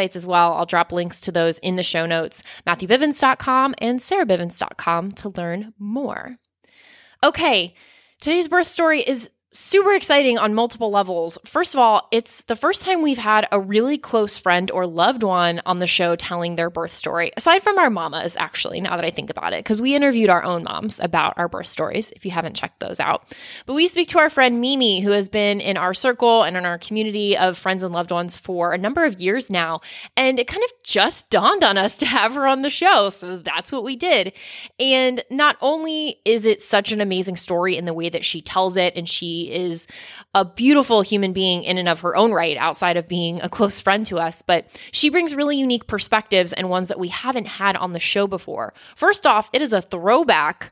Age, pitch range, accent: 20-39, 180-260 Hz, American